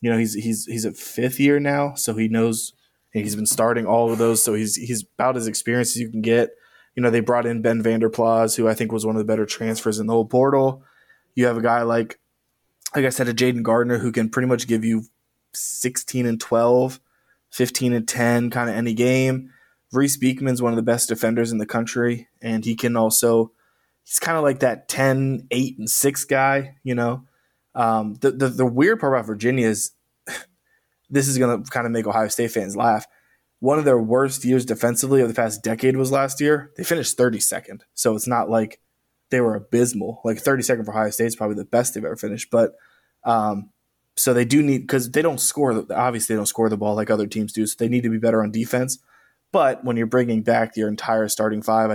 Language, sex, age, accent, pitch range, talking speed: English, male, 20-39, American, 110-125 Hz, 220 wpm